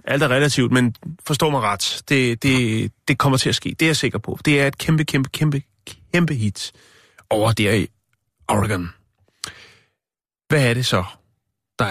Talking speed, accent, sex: 180 wpm, native, male